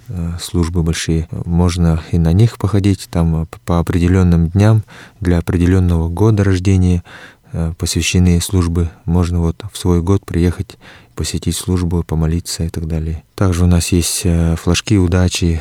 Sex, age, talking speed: male, 20-39, 135 wpm